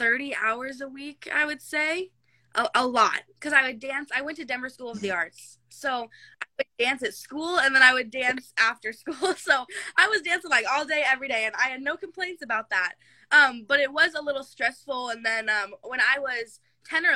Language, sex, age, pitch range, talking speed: English, female, 20-39, 205-275 Hz, 230 wpm